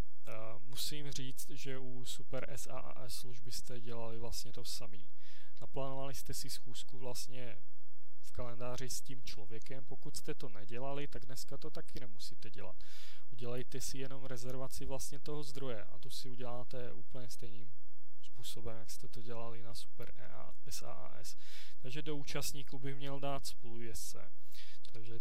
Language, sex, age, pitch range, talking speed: Czech, male, 20-39, 120-135 Hz, 150 wpm